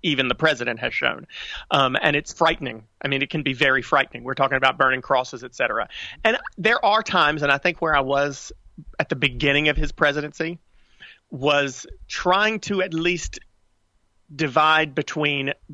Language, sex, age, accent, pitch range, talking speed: English, male, 40-59, American, 135-165 Hz, 175 wpm